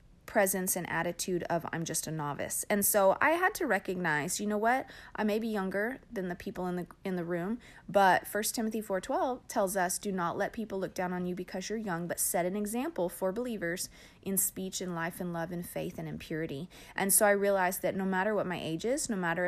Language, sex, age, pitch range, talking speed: English, female, 30-49, 175-205 Hz, 235 wpm